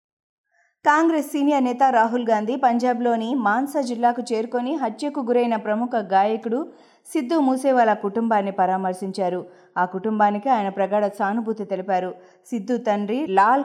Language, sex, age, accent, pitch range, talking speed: Telugu, female, 30-49, native, 195-260 Hz, 115 wpm